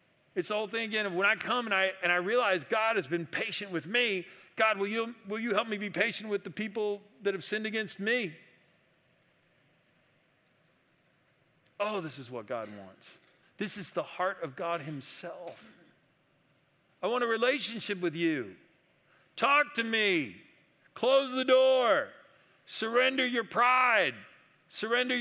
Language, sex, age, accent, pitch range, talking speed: English, male, 50-69, American, 145-225 Hz, 155 wpm